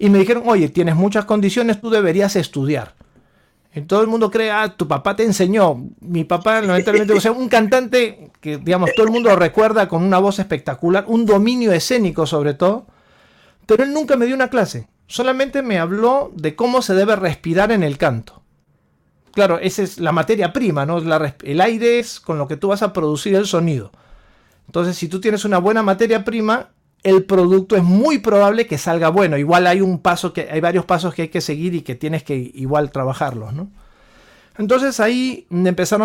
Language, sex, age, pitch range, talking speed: Spanish, male, 40-59, 165-215 Hz, 195 wpm